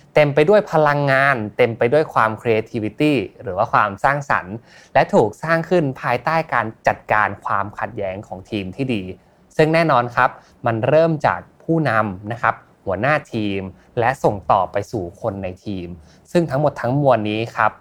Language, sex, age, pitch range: Thai, male, 20-39, 105-140 Hz